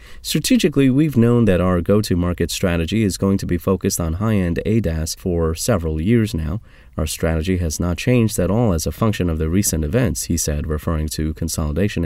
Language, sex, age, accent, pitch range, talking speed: English, male, 30-49, American, 80-110 Hz, 190 wpm